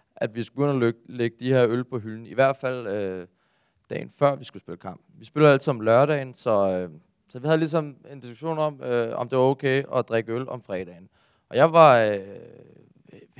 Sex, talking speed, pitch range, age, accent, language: male, 220 wpm, 120-155 Hz, 20-39, native, Danish